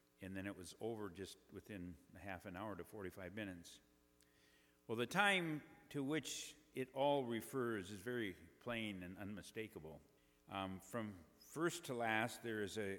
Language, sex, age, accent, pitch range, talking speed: English, male, 50-69, American, 90-125 Hz, 155 wpm